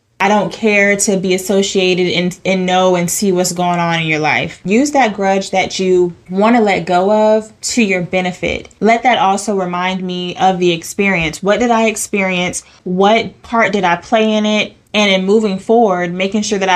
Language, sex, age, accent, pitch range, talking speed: English, female, 20-39, American, 180-210 Hz, 200 wpm